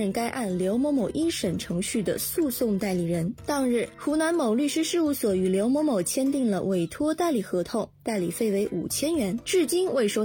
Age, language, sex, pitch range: 20-39, Chinese, female, 200-285 Hz